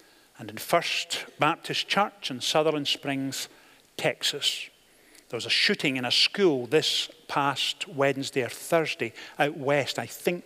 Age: 50-69